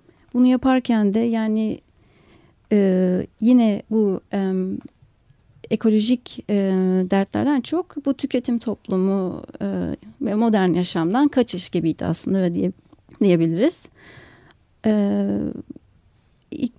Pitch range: 195-235 Hz